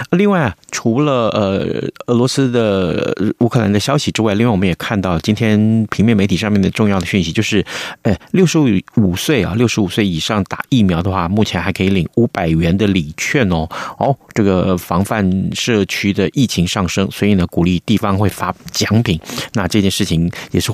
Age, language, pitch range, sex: 30-49, Chinese, 95-120 Hz, male